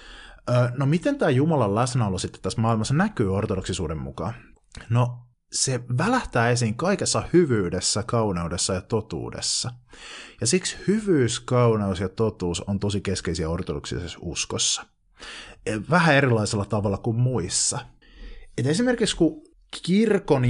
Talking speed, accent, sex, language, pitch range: 120 wpm, native, male, Finnish, 95-125 Hz